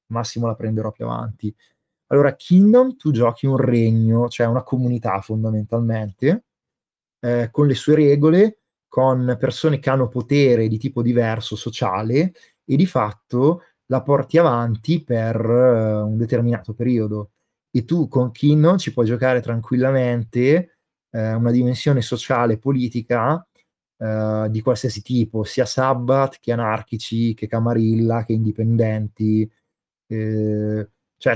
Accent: native